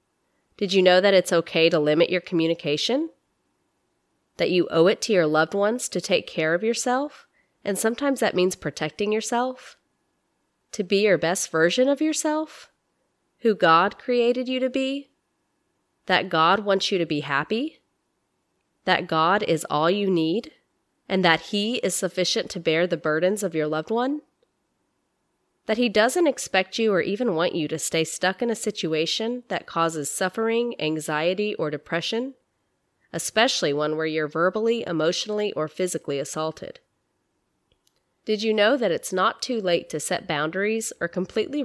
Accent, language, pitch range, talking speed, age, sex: American, English, 160-225 Hz, 160 wpm, 30-49, female